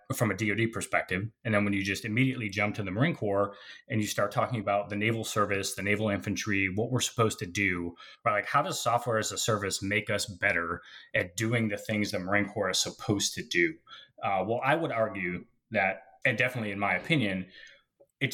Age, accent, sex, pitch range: 30-49, American, male, 100-120 Hz